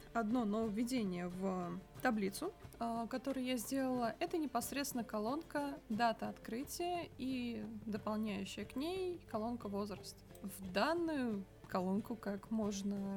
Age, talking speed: 20-39, 105 wpm